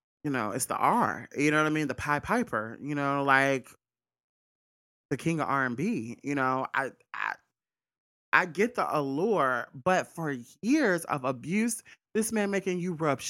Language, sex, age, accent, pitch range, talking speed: English, male, 30-49, American, 140-200 Hz, 180 wpm